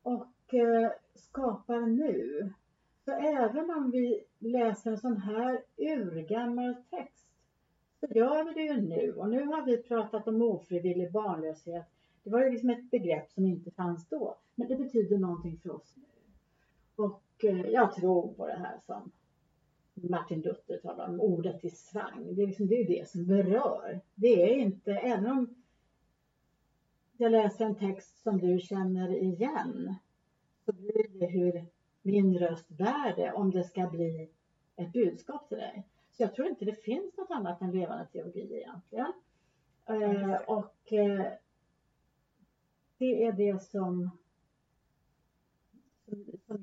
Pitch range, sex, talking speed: 175-235 Hz, female, 145 wpm